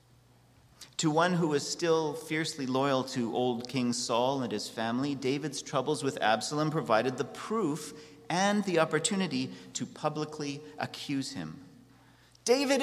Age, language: 40-59, English